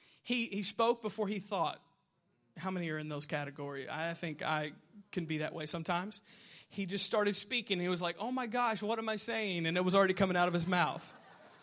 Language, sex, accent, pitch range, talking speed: English, male, American, 170-230 Hz, 220 wpm